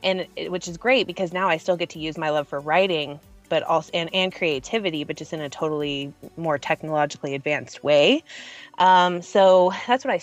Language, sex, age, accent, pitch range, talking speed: English, female, 20-39, American, 160-190 Hz, 205 wpm